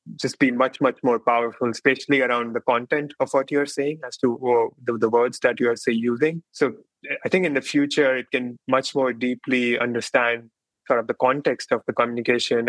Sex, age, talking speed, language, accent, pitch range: male, 20-39, 205 wpm, English, Indian, 115-125 Hz